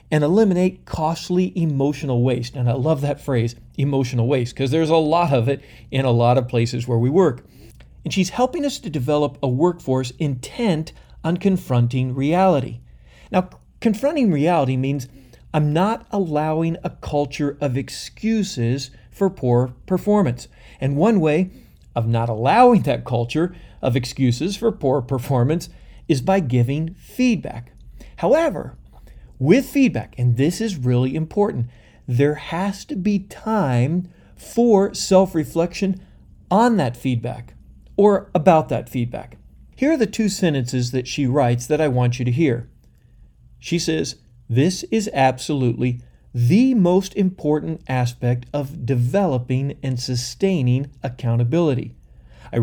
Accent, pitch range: American, 125-180 Hz